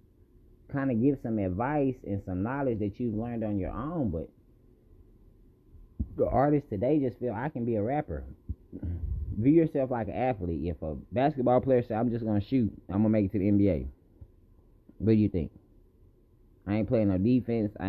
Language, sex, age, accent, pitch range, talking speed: English, male, 20-39, American, 90-115 Hz, 190 wpm